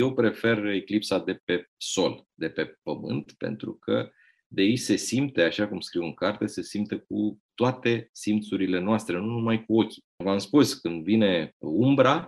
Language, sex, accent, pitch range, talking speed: Romanian, male, native, 85-115 Hz, 170 wpm